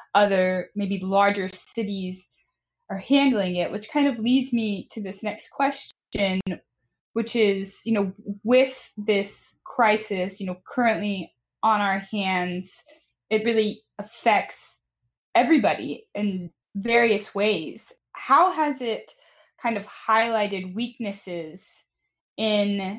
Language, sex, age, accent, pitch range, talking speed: English, female, 10-29, American, 185-220 Hz, 115 wpm